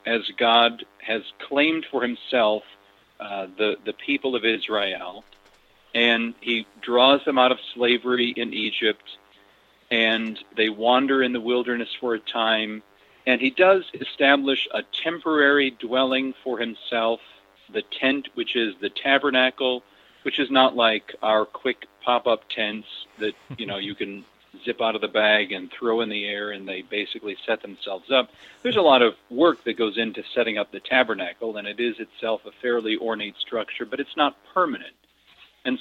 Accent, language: American, English